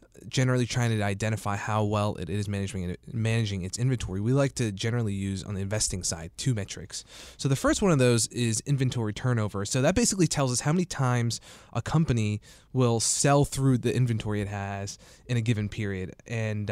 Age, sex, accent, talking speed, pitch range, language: 20-39, male, American, 195 wpm, 100-125 Hz, English